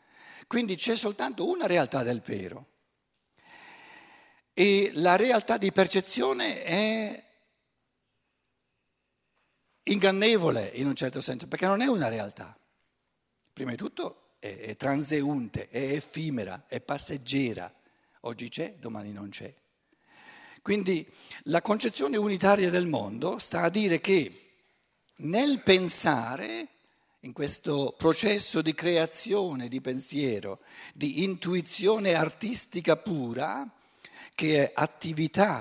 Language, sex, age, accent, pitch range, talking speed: Italian, male, 60-79, native, 140-210 Hz, 105 wpm